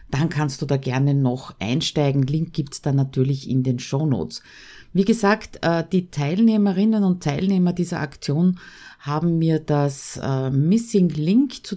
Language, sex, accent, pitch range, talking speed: German, female, Austrian, 135-185 Hz, 150 wpm